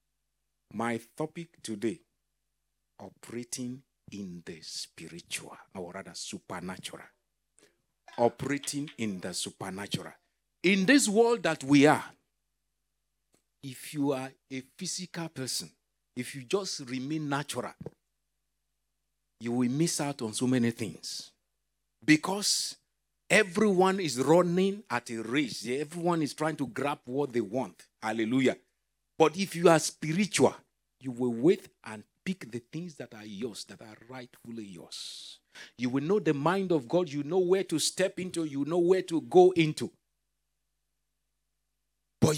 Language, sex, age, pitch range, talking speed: English, male, 50-69, 120-175 Hz, 135 wpm